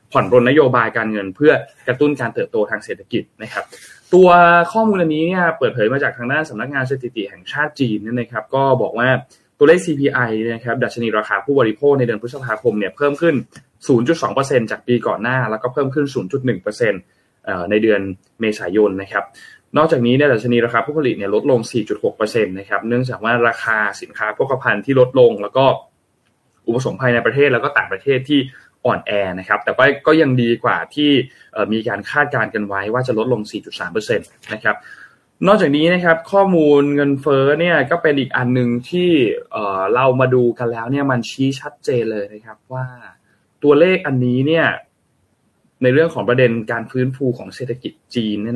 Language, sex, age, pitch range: Thai, male, 20-39, 115-140 Hz